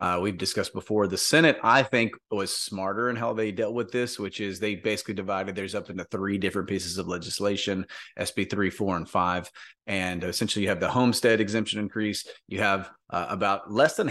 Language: English